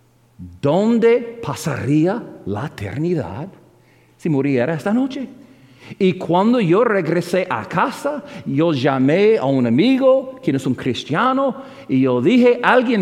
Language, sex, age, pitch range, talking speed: English, male, 50-69, 135-200 Hz, 125 wpm